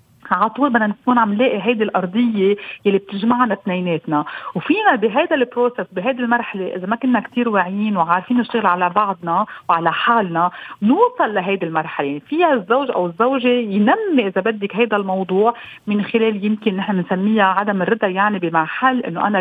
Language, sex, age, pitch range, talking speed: Arabic, female, 40-59, 195-255 Hz, 160 wpm